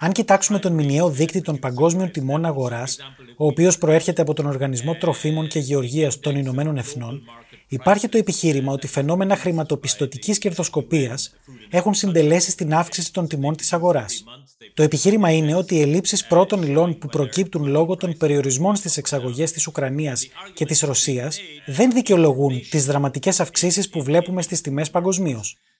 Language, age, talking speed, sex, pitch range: Greek, 20-39, 155 wpm, male, 140-180 Hz